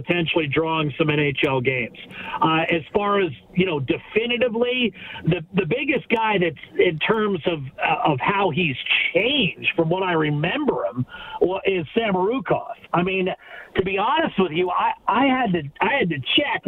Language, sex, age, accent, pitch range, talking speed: English, male, 50-69, American, 170-240 Hz, 175 wpm